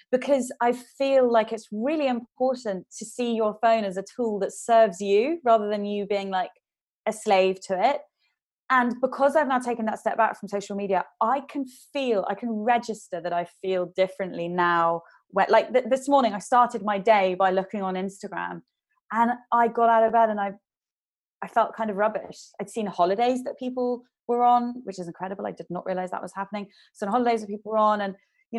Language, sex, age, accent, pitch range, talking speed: English, female, 20-39, British, 195-240 Hz, 205 wpm